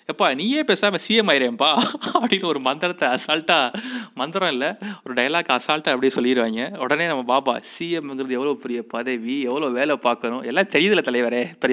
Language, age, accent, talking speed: Tamil, 30-49, native, 155 wpm